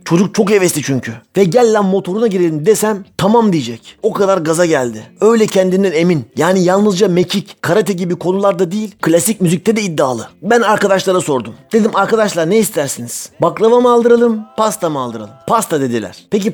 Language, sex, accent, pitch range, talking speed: Turkish, male, native, 165-215 Hz, 165 wpm